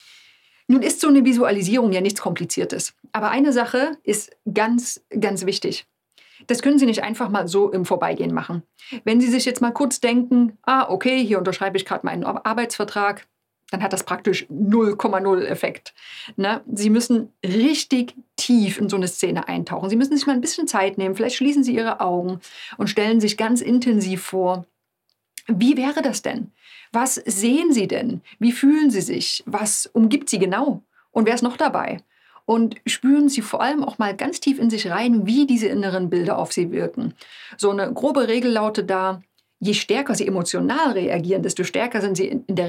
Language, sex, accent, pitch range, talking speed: German, female, German, 195-255 Hz, 185 wpm